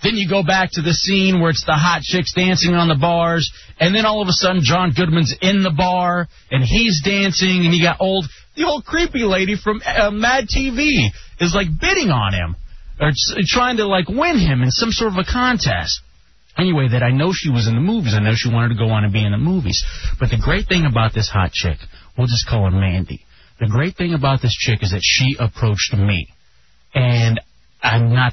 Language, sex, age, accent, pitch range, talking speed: English, male, 30-49, American, 115-185 Hz, 230 wpm